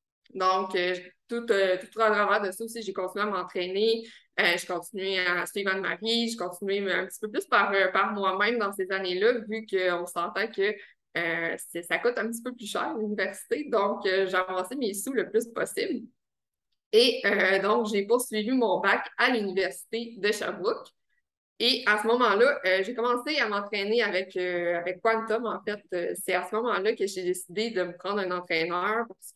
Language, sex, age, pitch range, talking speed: French, female, 20-39, 185-225 Hz, 190 wpm